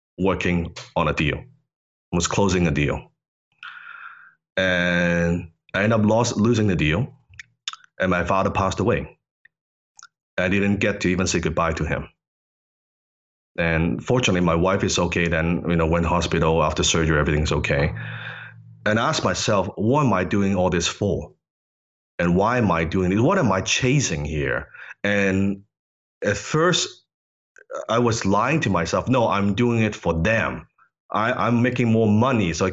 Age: 30-49